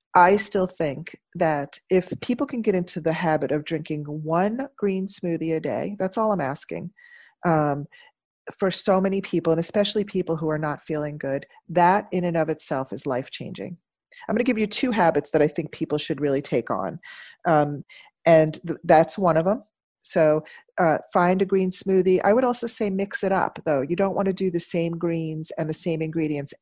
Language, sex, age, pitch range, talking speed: English, female, 40-59, 145-185 Hz, 200 wpm